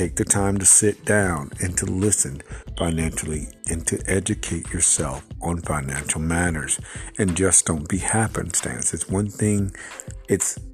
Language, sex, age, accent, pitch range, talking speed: English, male, 50-69, American, 85-105 Hz, 145 wpm